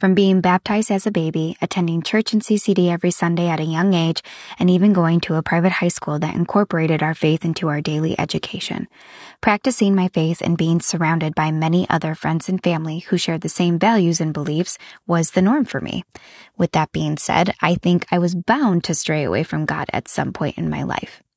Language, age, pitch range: English, 20-39, 155-185 Hz